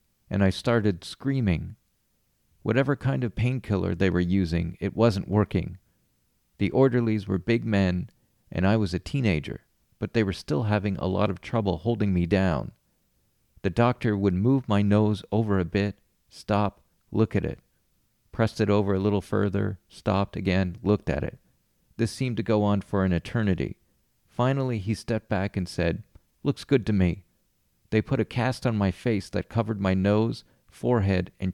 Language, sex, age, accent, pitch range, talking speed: English, male, 40-59, American, 95-115 Hz, 175 wpm